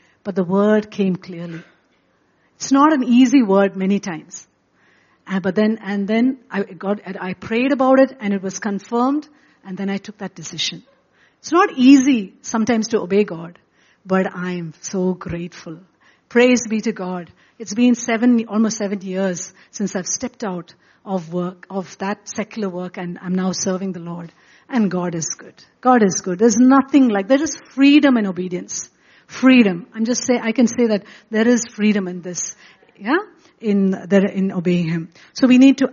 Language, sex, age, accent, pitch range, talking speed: English, female, 60-79, Indian, 190-255 Hz, 180 wpm